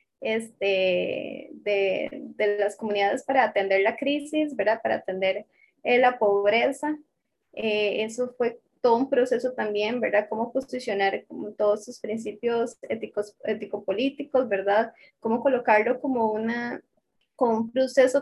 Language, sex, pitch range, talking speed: Spanish, female, 215-265 Hz, 130 wpm